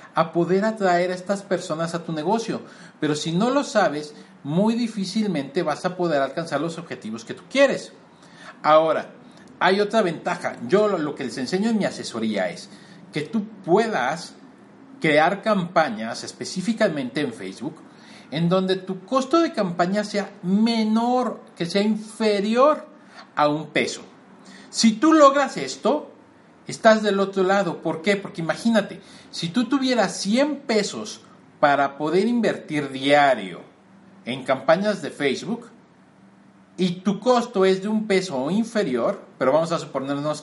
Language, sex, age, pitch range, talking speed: Spanish, male, 40-59, 155-215 Hz, 145 wpm